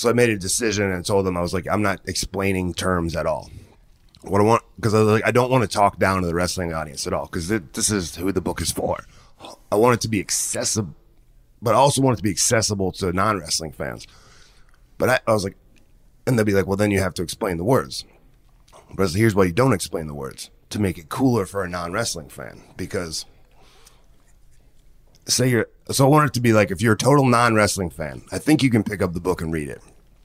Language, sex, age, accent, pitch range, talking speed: English, male, 30-49, American, 90-110 Hz, 245 wpm